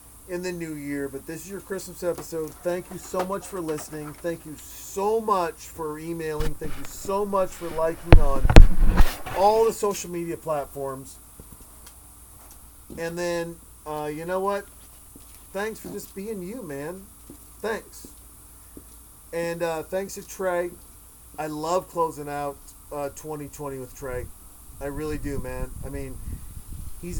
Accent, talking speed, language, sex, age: American, 150 wpm, English, male, 40-59